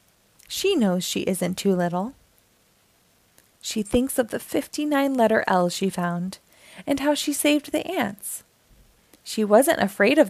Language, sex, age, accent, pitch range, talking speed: English, female, 20-39, American, 195-280 Hz, 145 wpm